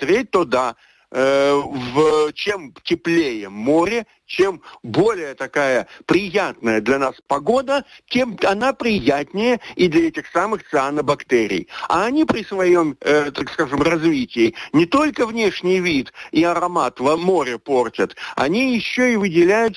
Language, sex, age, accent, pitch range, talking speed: Russian, male, 60-79, native, 155-230 Hz, 130 wpm